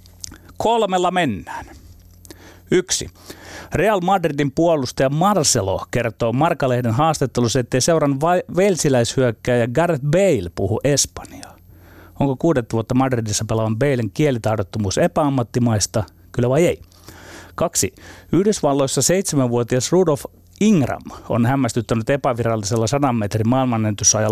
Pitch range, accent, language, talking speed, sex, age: 100-145 Hz, native, Finnish, 100 wpm, male, 30-49